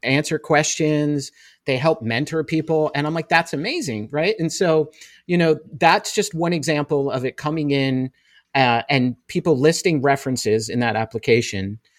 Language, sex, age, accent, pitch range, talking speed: English, male, 40-59, American, 120-155 Hz, 160 wpm